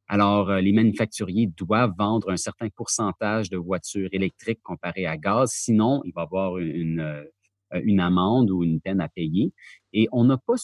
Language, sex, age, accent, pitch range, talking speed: French, male, 30-49, Canadian, 95-125 Hz, 170 wpm